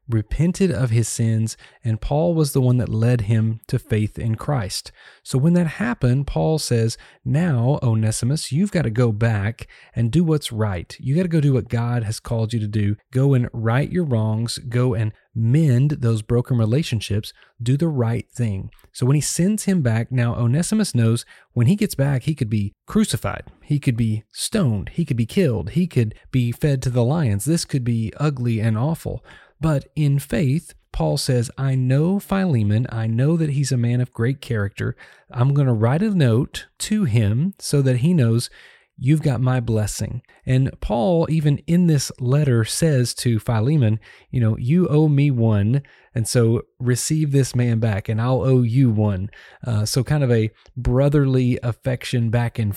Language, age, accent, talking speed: English, 30-49, American, 190 wpm